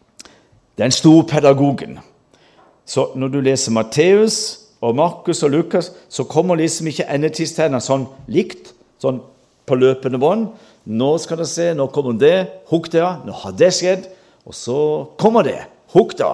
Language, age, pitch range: English, 50-69, 115-170 Hz